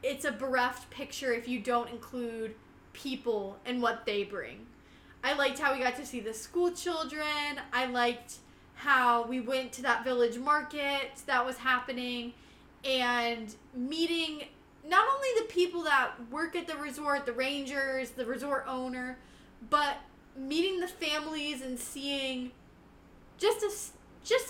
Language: English